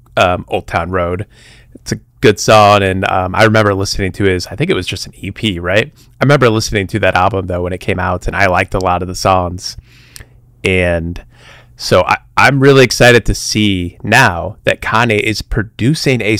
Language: English